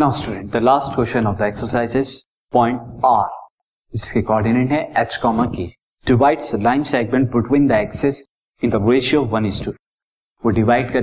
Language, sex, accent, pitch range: Hindi, male, native, 115-140 Hz